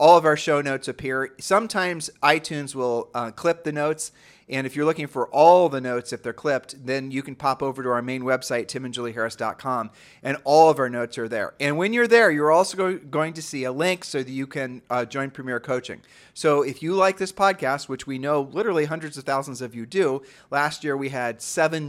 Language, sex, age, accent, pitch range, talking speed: English, male, 40-59, American, 130-160 Hz, 220 wpm